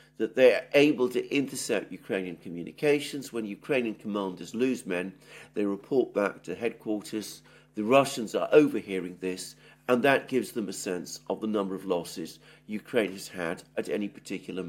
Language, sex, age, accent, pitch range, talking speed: English, male, 50-69, British, 105-165 Hz, 160 wpm